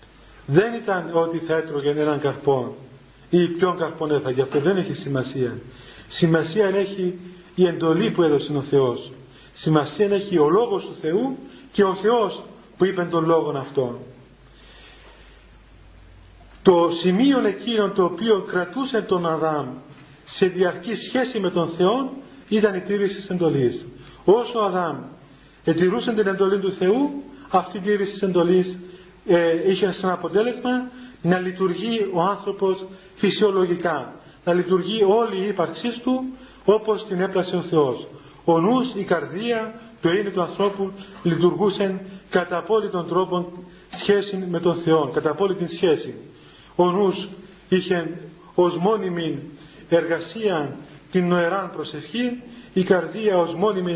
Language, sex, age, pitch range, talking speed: Greek, male, 40-59, 160-200 Hz, 130 wpm